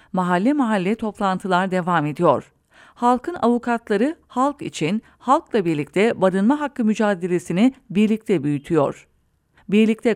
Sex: female